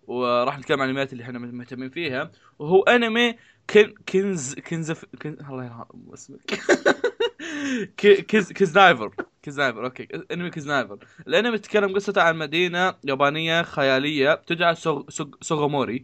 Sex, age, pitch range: male, 20-39, 130-175 Hz